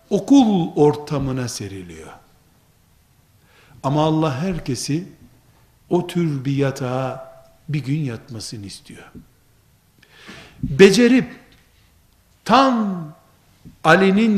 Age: 60-79